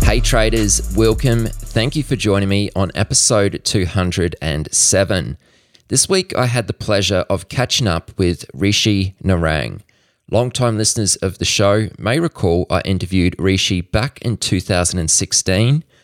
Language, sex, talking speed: English, male, 135 wpm